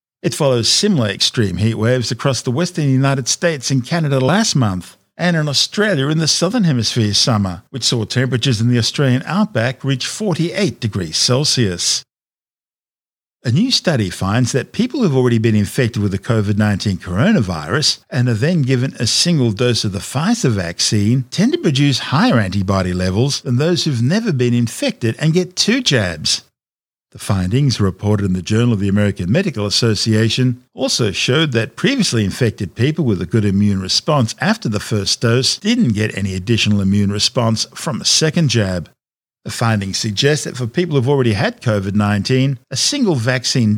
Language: English